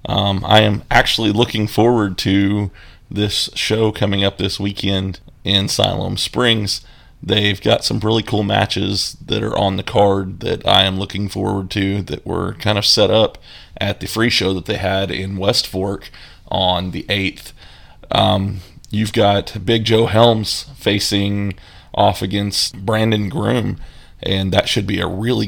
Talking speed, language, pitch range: 165 wpm, English, 95-110 Hz